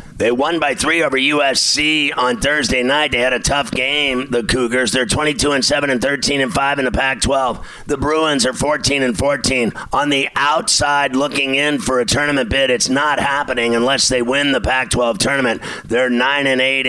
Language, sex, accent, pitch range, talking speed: English, male, American, 130-145 Hz, 200 wpm